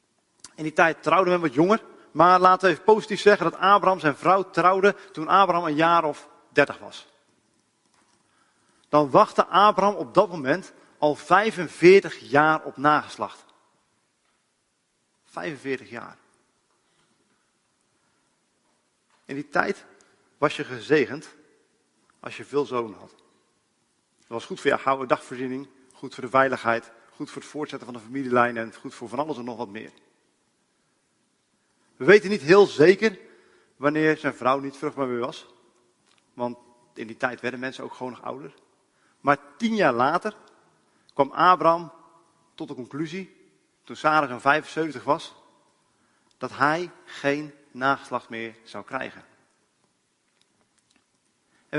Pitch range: 130-180 Hz